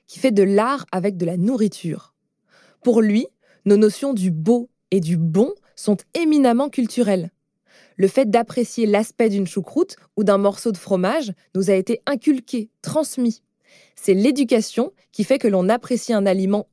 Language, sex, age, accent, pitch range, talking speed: French, female, 20-39, French, 195-245 Hz, 160 wpm